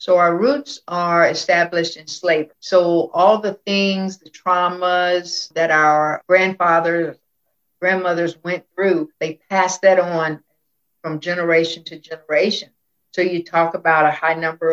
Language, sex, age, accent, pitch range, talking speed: English, female, 60-79, American, 155-180 Hz, 140 wpm